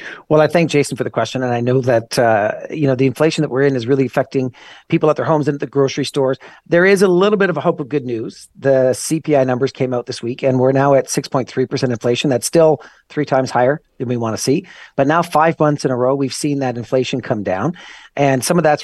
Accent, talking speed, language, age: American, 270 wpm, English, 40-59